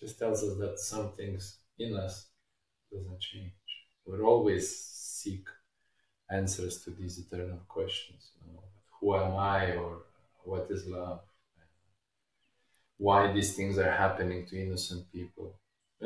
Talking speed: 140 wpm